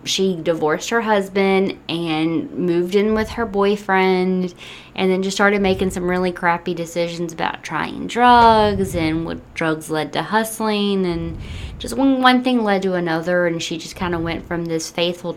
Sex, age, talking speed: female, 20-39, 170 wpm